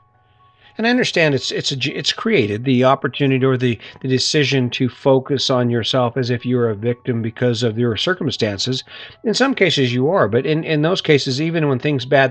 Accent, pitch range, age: American, 120-140 Hz, 50-69